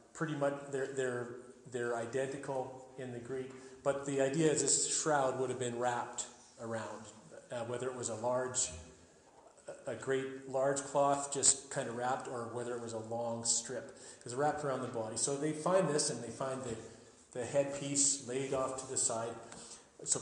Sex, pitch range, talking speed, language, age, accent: male, 125-150 Hz, 185 wpm, English, 40-59, American